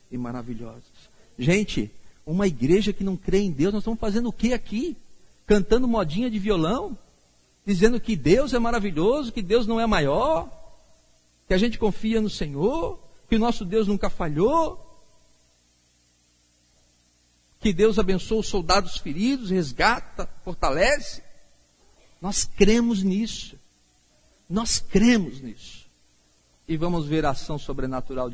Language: Portuguese